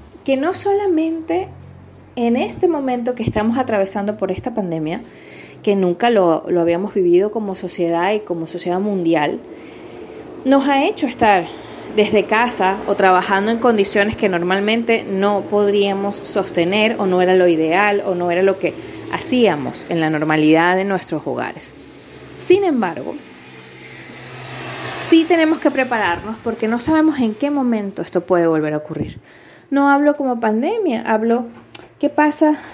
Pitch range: 185-260 Hz